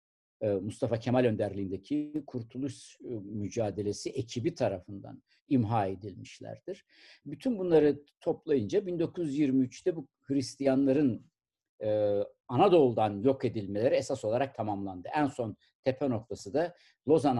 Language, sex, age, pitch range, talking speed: Turkish, male, 60-79, 105-140 Hz, 95 wpm